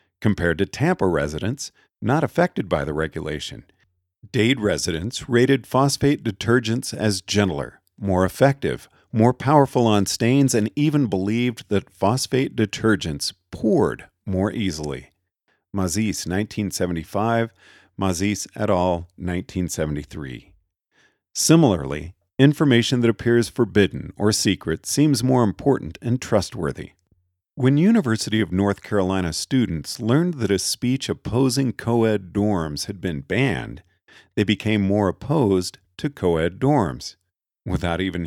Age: 50-69